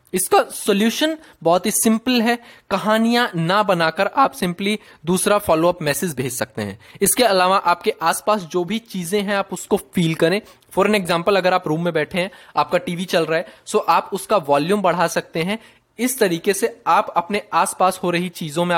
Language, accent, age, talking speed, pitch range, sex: Hindi, native, 20-39, 190 wpm, 170-215 Hz, male